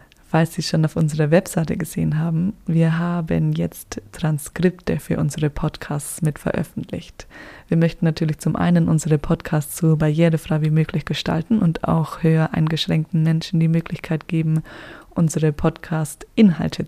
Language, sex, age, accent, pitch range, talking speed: German, female, 20-39, German, 160-180 Hz, 140 wpm